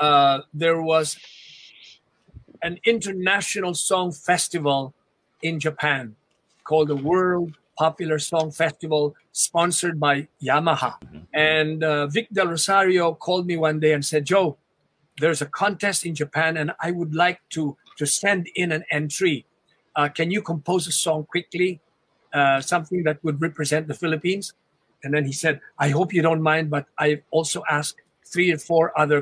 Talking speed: 155 wpm